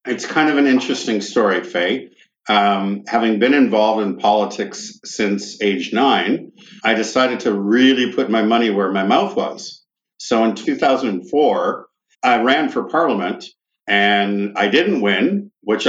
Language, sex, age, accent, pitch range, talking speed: English, male, 50-69, American, 105-160 Hz, 145 wpm